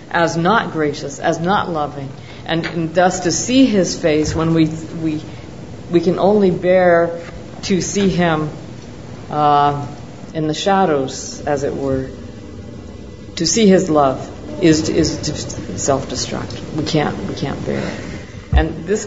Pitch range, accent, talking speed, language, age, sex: 115-180 Hz, American, 145 wpm, English, 50-69, female